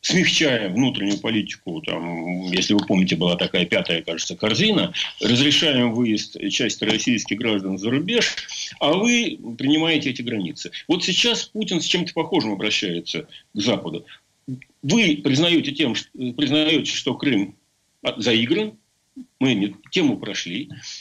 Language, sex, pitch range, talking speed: Ukrainian, male, 120-190 Hz, 125 wpm